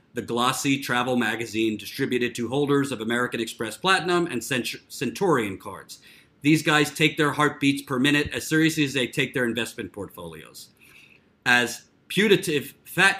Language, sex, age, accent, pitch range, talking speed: English, male, 40-59, American, 120-155 Hz, 145 wpm